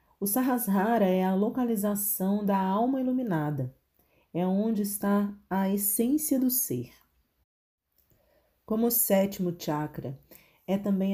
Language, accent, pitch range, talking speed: Portuguese, Brazilian, 160-205 Hz, 115 wpm